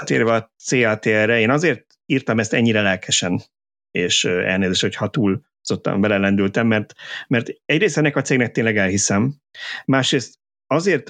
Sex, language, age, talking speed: male, Hungarian, 30-49, 135 wpm